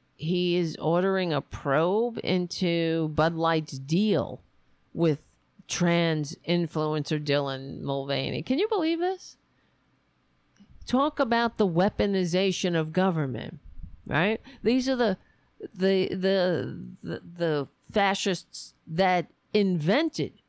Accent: American